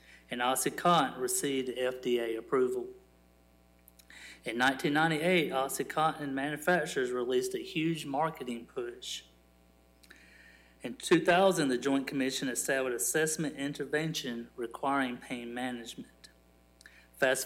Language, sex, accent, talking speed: English, male, American, 90 wpm